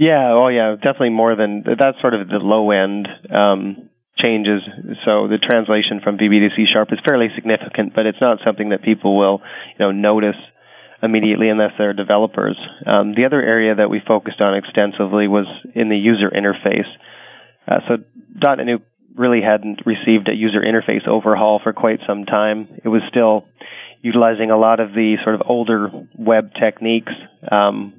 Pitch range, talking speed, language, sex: 105-115 Hz, 175 wpm, English, male